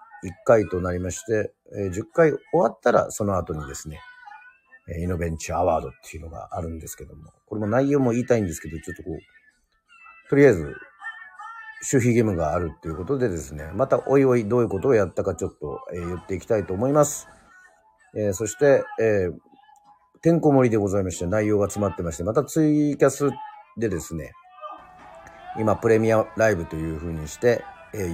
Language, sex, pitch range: Japanese, male, 85-135 Hz